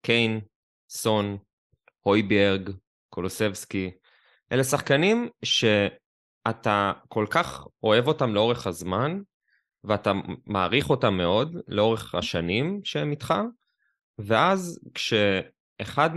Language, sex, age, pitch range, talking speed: Hebrew, male, 20-39, 100-140 Hz, 90 wpm